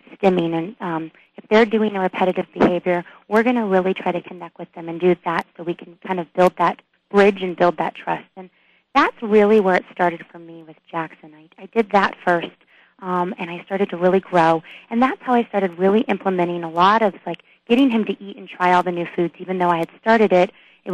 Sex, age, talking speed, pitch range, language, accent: female, 30-49, 240 wpm, 175-210 Hz, English, American